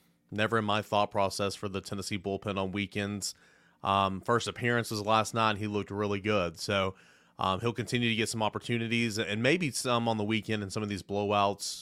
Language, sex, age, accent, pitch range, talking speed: English, male, 30-49, American, 100-115 Hz, 210 wpm